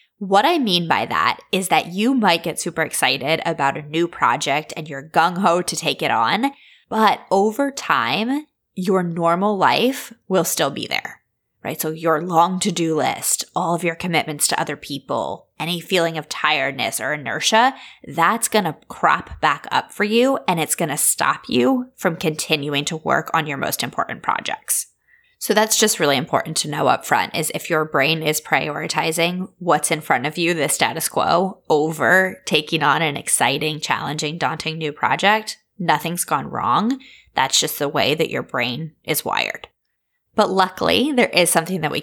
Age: 20-39